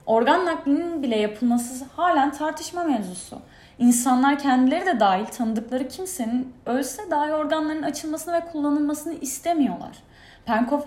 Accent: native